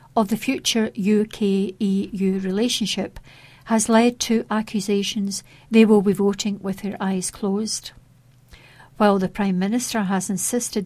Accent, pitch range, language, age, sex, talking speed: British, 185-215 Hz, English, 60-79, female, 125 wpm